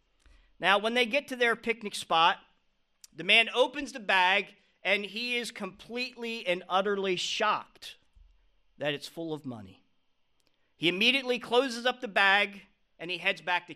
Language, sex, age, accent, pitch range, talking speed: English, male, 40-59, American, 175-230 Hz, 155 wpm